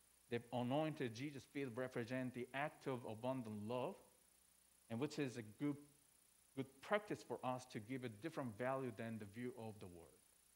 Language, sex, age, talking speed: English, male, 50-69, 170 wpm